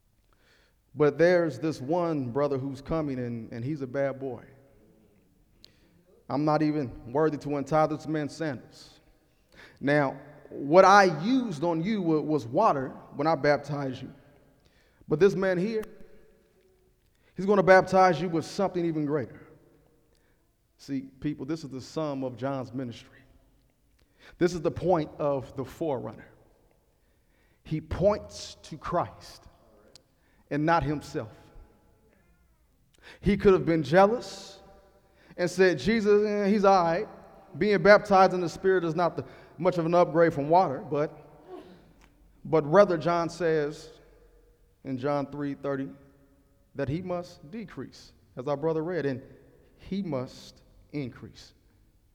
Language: English